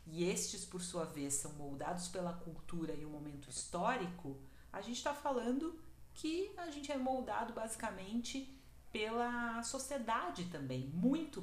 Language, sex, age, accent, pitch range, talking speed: Portuguese, female, 40-59, Brazilian, 145-200 Hz, 140 wpm